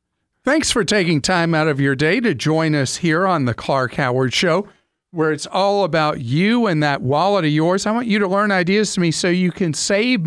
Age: 50-69